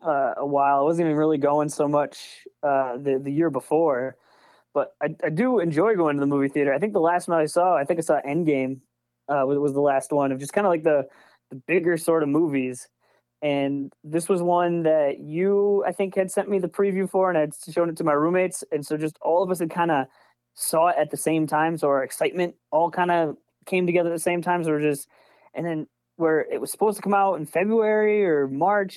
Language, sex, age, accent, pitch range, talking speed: English, male, 20-39, American, 145-180 Hz, 245 wpm